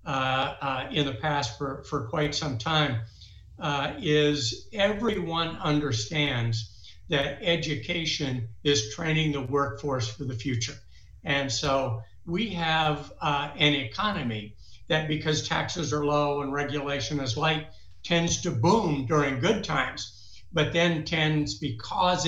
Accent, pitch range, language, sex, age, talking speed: American, 130-160 Hz, English, male, 60-79, 130 wpm